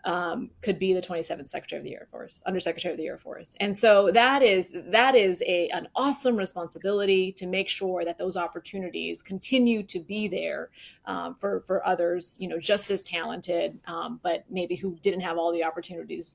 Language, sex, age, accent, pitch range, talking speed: English, female, 30-49, American, 175-210 Hz, 195 wpm